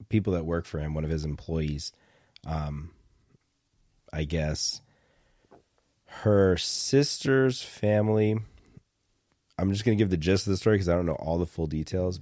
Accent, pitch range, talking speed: American, 75-90 Hz, 160 wpm